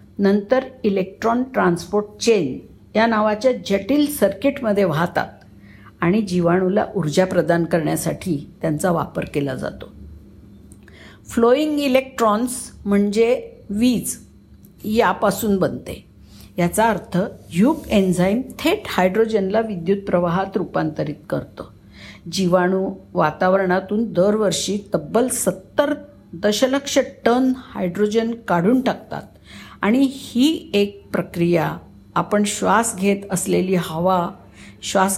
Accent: native